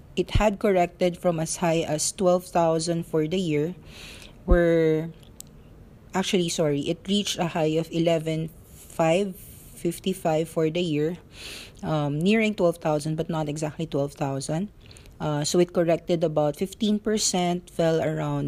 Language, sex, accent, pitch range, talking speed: English, female, Filipino, 150-175 Hz, 145 wpm